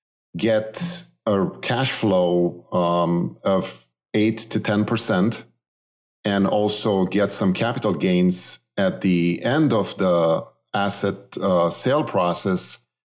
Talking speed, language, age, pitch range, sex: 115 wpm, English, 50-69, 90-110 Hz, male